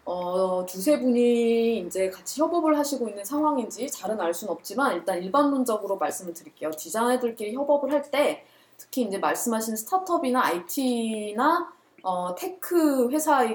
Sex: female